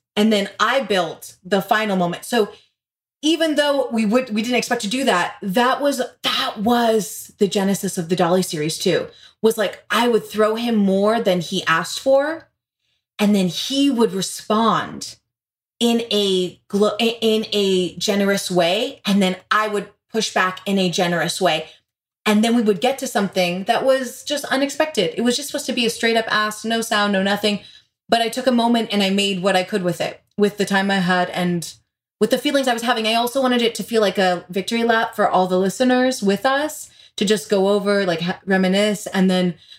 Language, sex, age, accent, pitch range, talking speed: English, female, 30-49, American, 185-230 Hz, 205 wpm